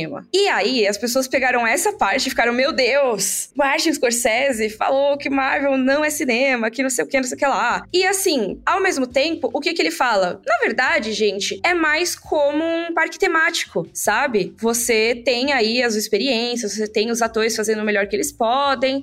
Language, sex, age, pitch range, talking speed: Portuguese, female, 20-39, 230-300 Hz, 205 wpm